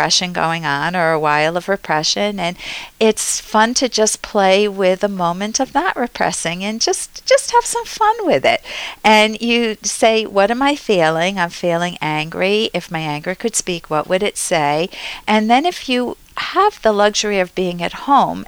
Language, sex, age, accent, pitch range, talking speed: English, female, 50-69, American, 165-225 Hz, 185 wpm